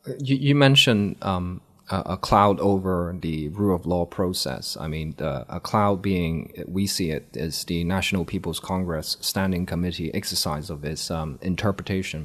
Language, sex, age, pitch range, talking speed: English, male, 20-39, 90-105 Hz, 155 wpm